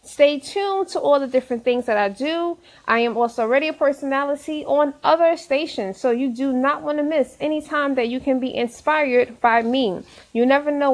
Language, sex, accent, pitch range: English, female, American, 240-305 Hz